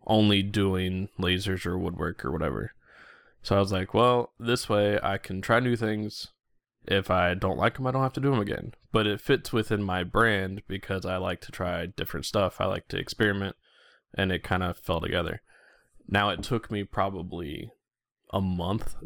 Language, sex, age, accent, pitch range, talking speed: English, male, 20-39, American, 90-105 Hz, 190 wpm